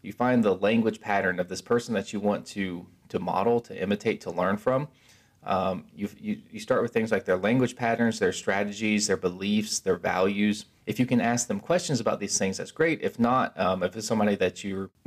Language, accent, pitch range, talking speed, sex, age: English, American, 100-120 Hz, 215 wpm, male, 20-39